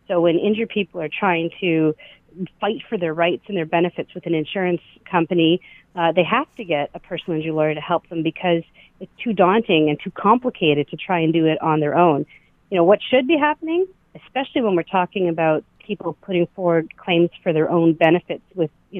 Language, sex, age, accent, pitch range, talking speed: English, female, 40-59, American, 165-210 Hz, 210 wpm